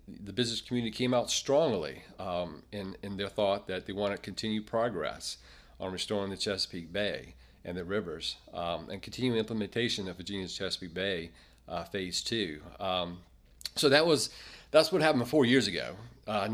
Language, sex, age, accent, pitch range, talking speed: English, male, 40-59, American, 90-115 Hz, 170 wpm